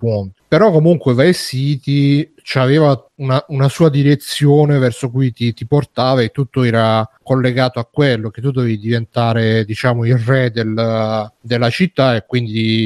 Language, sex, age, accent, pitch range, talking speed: Italian, male, 40-59, native, 115-135 Hz, 150 wpm